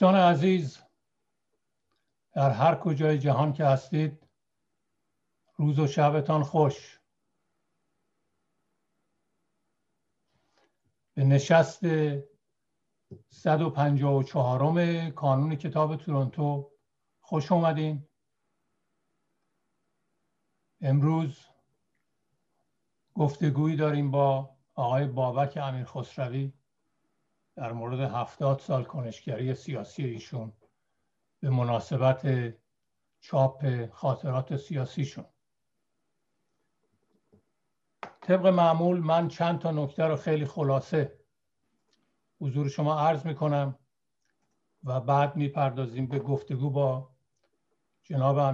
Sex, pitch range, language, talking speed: male, 135-155 Hz, Persian, 75 wpm